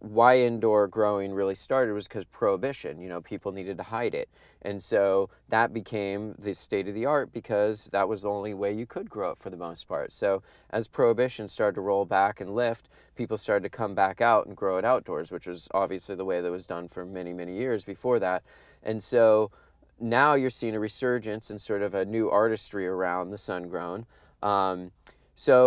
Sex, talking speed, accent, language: male, 210 wpm, American, English